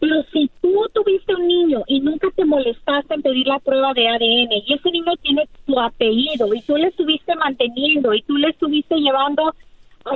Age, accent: 30-49, American